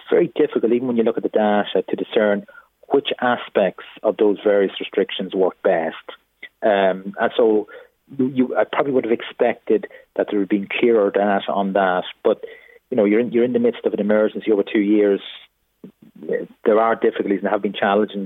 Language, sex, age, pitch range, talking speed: English, male, 30-49, 100-125 Hz, 185 wpm